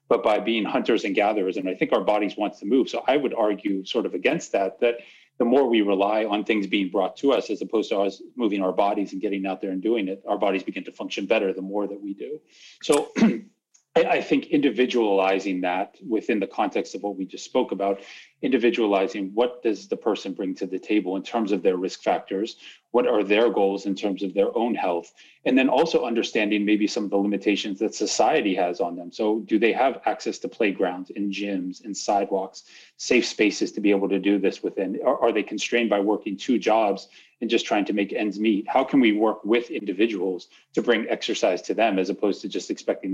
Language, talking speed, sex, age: English, 225 wpm, male, 30-49